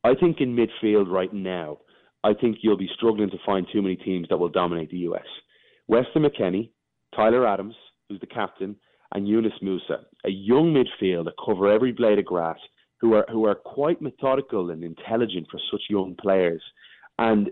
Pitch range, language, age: 95-120 Hz, English, 30-49